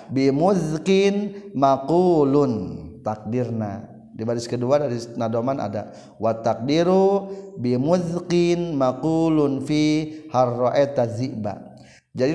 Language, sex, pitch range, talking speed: Indonesian, male, 125-160 Hz, 80 wpm